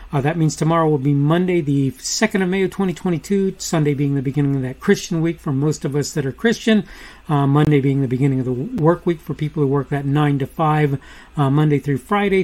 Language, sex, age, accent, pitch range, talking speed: English, male, 40-59, American, 140-185 Hz, 235 wpm